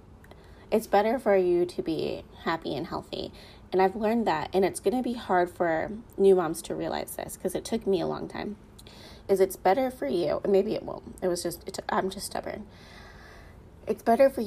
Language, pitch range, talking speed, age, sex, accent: English, 165-210 Hz, 195 wpm, 20-39, female, American